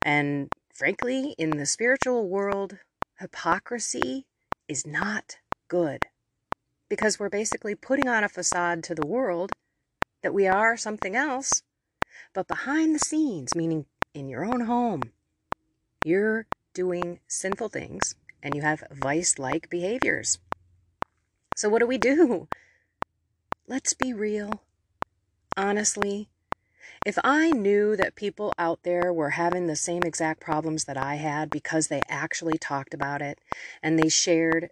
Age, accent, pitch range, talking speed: 30-49, American, 160-215 Hz, 135 wpm